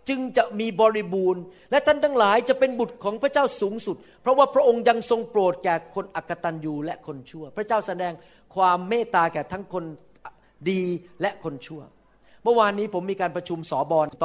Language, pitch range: Thai, 155-220 Hz